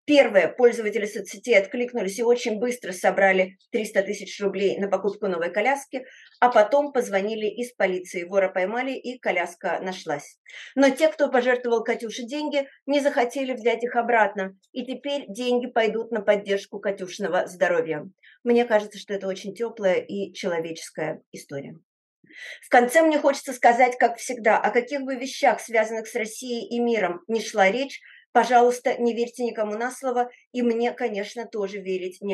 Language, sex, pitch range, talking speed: Russian, female, 195-250 Hz, 155 wpm